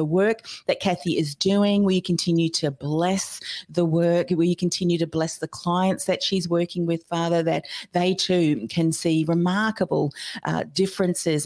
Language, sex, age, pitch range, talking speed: English, female, 40-59, 145-175 Hz, 155 wpm